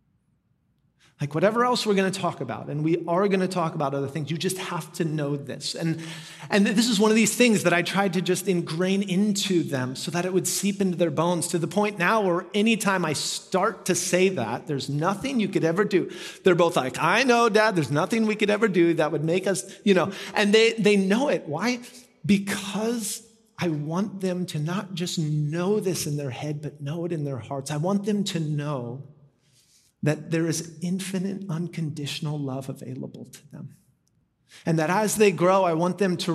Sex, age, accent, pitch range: male, 30-49, American, 155-200 Hz